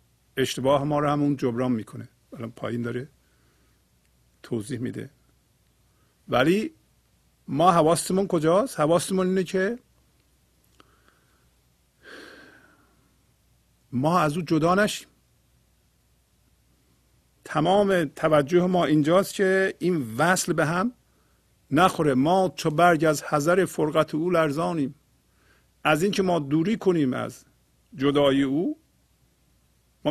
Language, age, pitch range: English, 50-69, 110-165 Hz